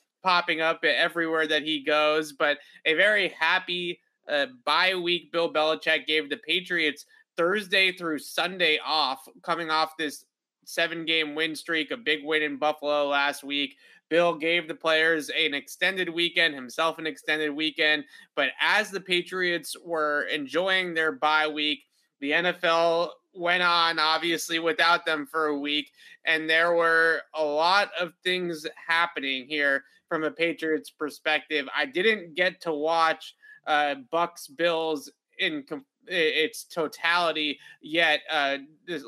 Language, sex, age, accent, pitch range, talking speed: English, male, 20-39, American, 155-175 Hz, 145 wpm